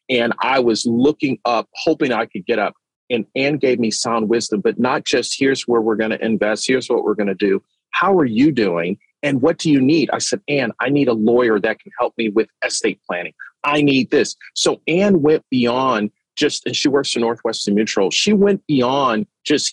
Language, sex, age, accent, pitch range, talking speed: English, male, 40-59, American, 115-160 Hz, 220 wpm